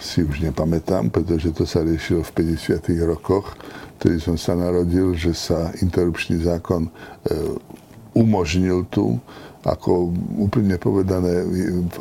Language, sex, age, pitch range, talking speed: Slovak, male, 60-79, 85-105 Hz, 120 wpm